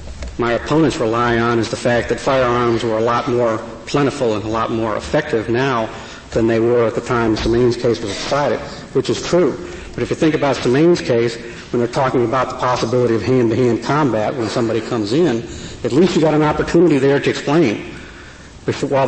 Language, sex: English, male